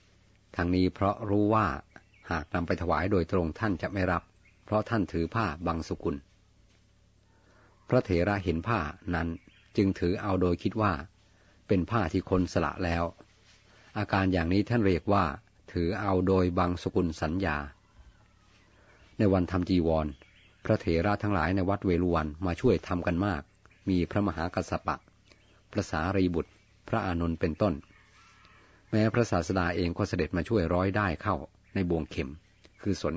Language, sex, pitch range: Thai, male, 85-105 Hz